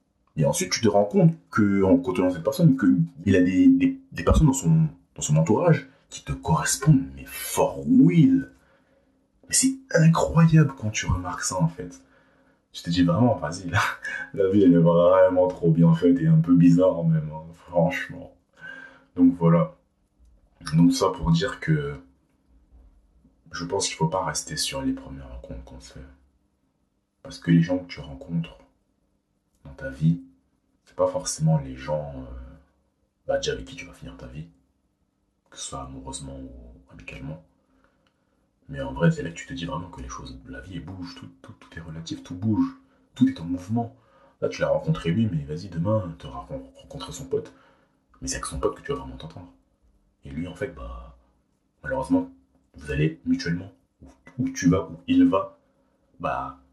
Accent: French